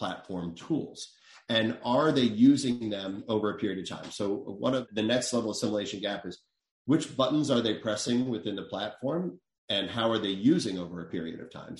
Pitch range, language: 100-120 Hz, English